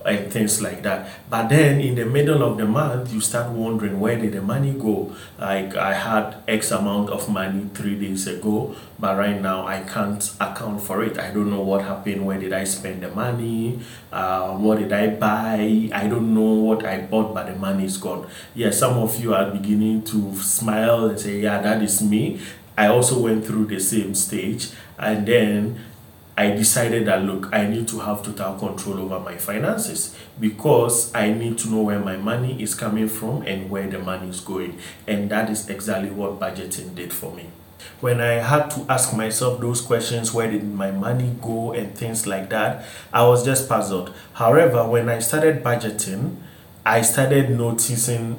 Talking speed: 195 wpm